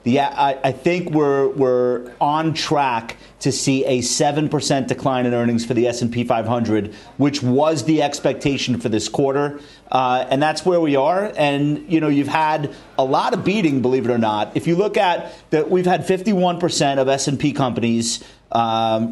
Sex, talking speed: male, 175 wpm